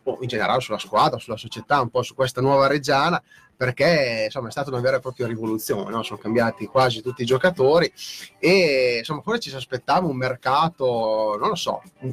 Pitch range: 115-140 Hz